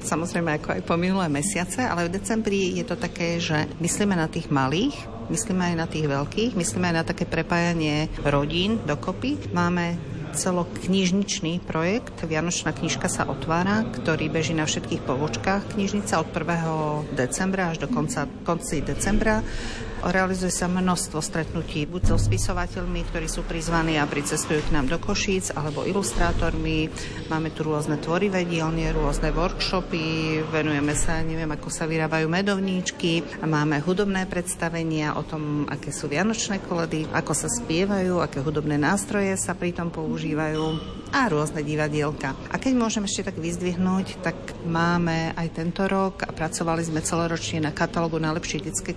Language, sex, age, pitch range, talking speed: Slovak, female, 50-69, 155-180 Hz, 150 wpm